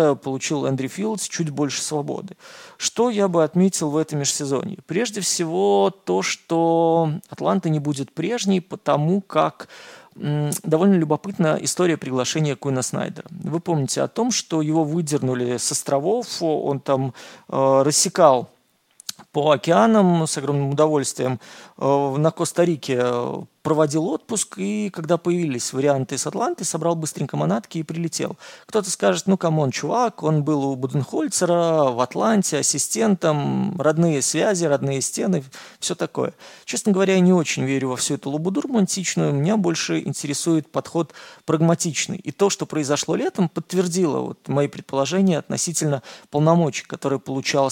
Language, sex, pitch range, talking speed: Russian, male, 145-185 Hz, 140 wpm